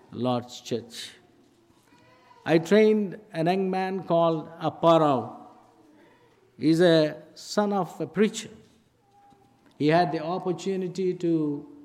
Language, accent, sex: English, Indian, male